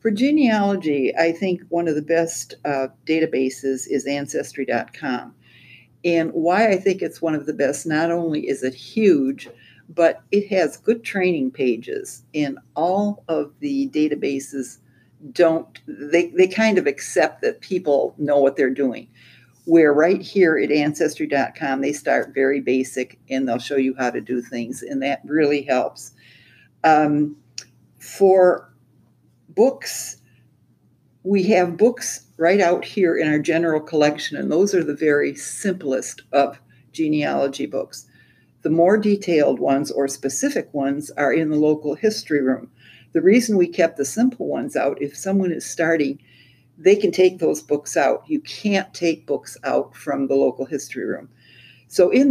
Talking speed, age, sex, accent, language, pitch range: 155 wpm, 60-79, female, American, English, 135-180 Hz